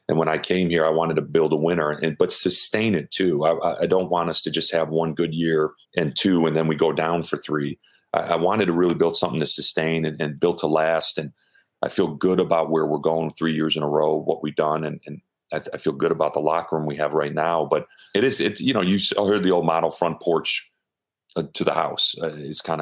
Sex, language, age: male, English, 40-59